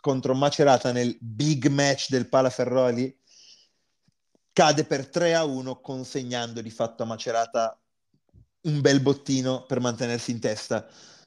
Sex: male